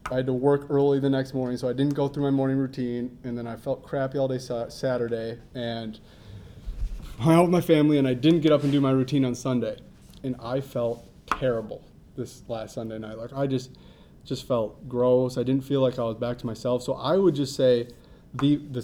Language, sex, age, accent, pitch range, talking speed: English, male, 30-49, American, 120-140 Hz, 225 wpm